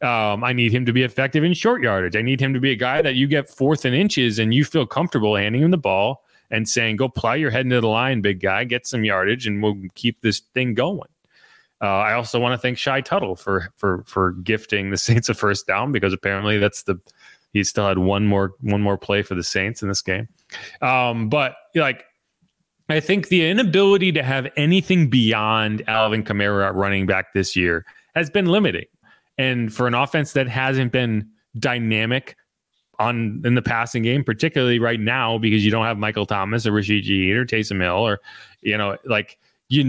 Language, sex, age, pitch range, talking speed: English, male, 30-49, 110-155 Hz, 210 wpm